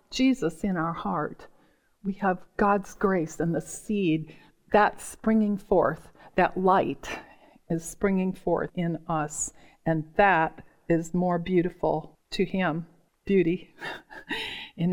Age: 50-69